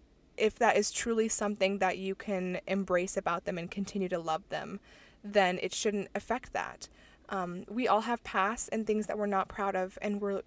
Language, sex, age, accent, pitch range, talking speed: English, female, 20-39, American, 185-220 Hz, 200 wpm